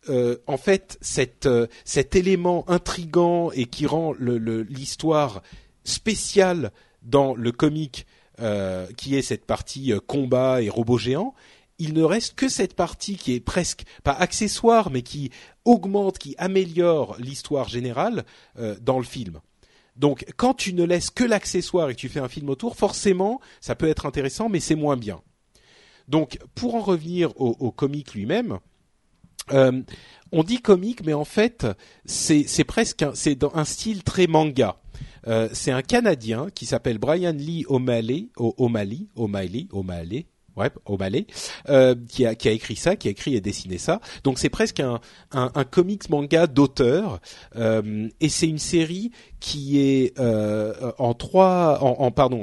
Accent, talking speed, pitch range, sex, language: French, 165 wpm, 120-170 Hz, male, French